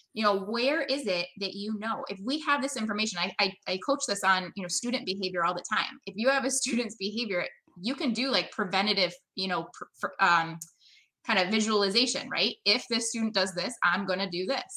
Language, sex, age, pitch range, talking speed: English, female, 20-39, 185-235 Hz, 225 wpm